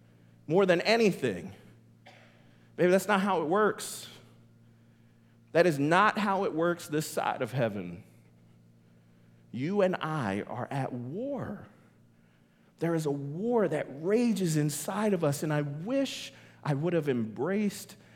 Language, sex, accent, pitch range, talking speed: English, male, American, 120-185 Hz, 135 wpm